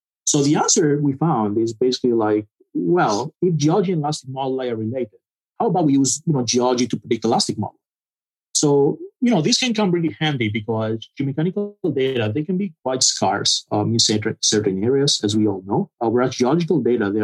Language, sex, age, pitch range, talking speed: English, male, 30-49, 110-150 Hz, 195 wpm